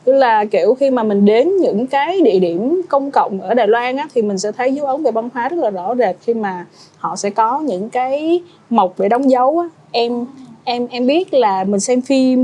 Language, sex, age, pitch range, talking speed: Vietnamese, female, 20-39, 195-260 Hz, 240 wpm